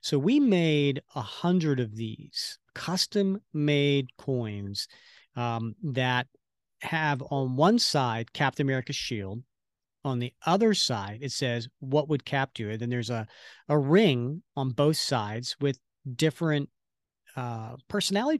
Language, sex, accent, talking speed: English, male, American, 135 wpm